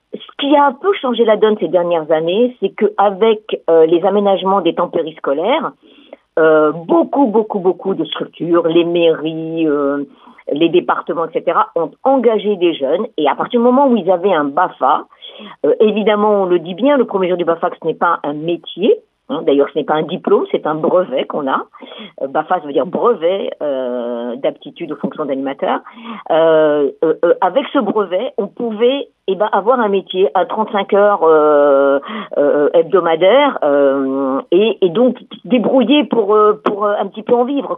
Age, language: 50-69, French